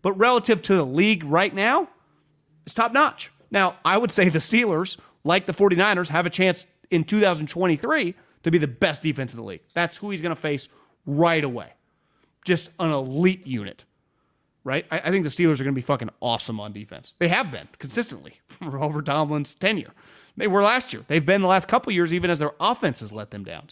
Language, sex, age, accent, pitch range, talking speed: English, male, 30-49, American, 125-180 Hz, 210 wpm